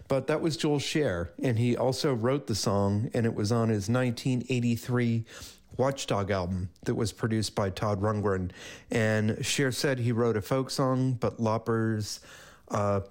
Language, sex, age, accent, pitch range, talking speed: English, male, 40-59, American, 100-125 Hz, 165 wpm